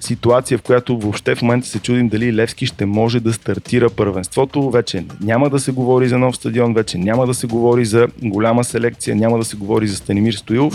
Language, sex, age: Bulgarian, male, 30-49